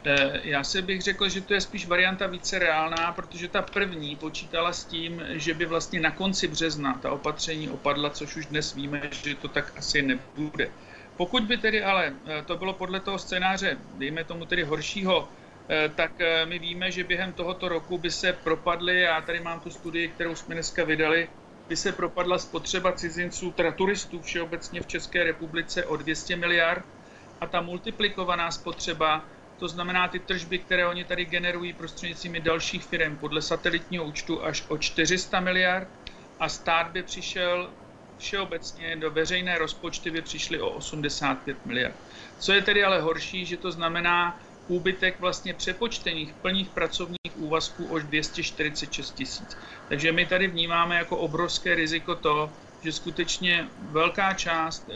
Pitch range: 155-180 Hz